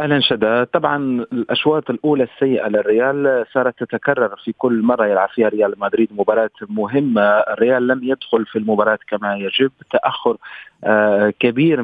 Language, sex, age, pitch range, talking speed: Arabic, male, 40-59, 110-140 Hz, 135 wpm